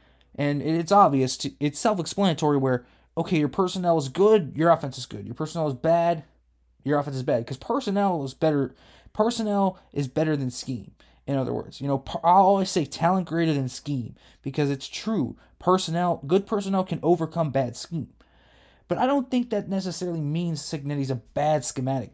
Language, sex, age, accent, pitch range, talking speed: English, male, 20-39, American, 135-170 Hz, 180 wpm